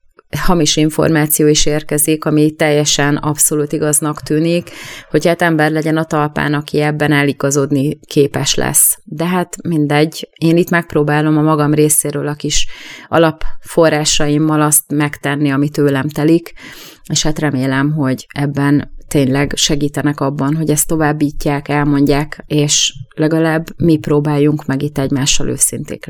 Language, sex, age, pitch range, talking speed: Hungarian, female, 30-49, 150-170 Hz, 130 wpm